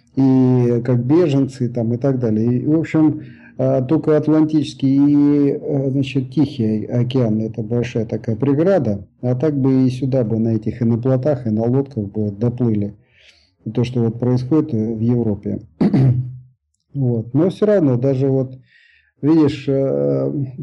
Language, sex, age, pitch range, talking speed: Russian, male, 50-69, 115-140 Hz, 145 wpm